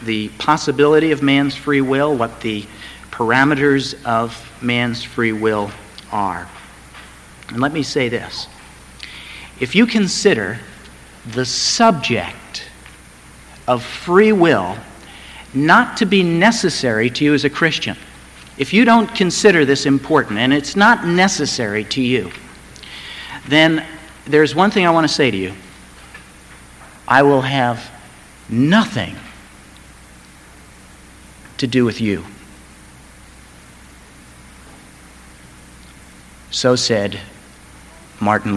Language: English